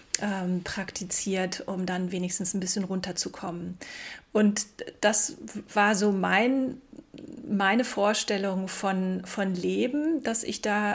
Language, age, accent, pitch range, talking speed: German, 30-49, German, 185-220 Hz, 110 wpm